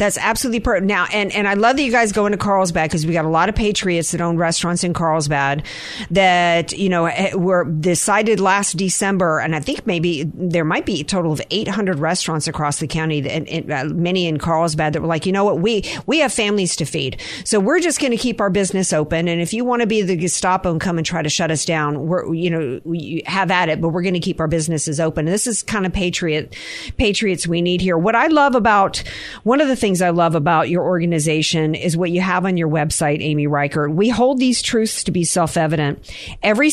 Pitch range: 165-205 Hz